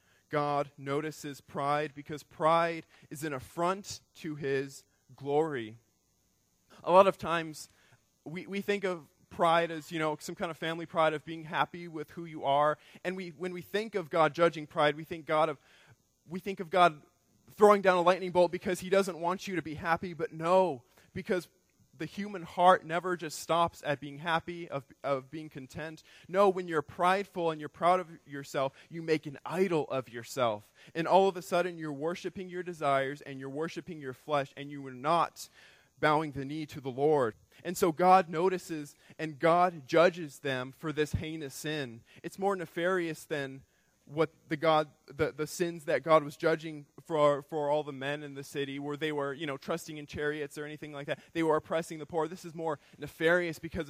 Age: 20-39